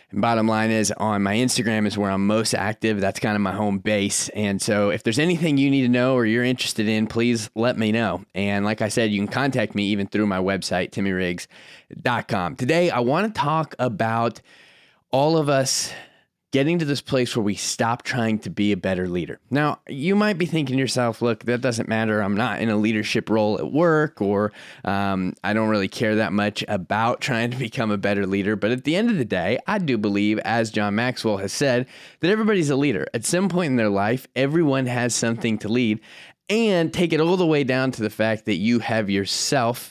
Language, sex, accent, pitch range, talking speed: English, male, American, 105-145 Hz, 220 wpm